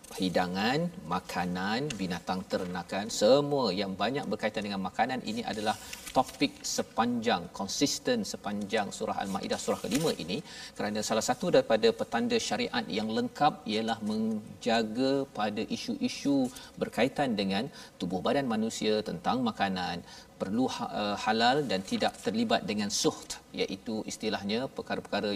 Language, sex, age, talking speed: Malayalam, male, 40-59, 120 wpm